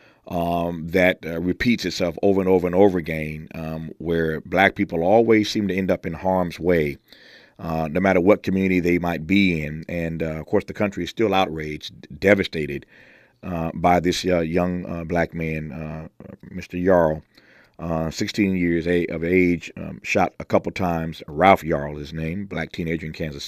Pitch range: 80-95 Hz